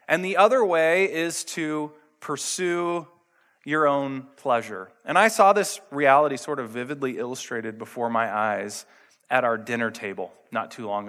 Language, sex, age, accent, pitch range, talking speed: English, male, 20-39, American, 120-170 Hz, 155 wpm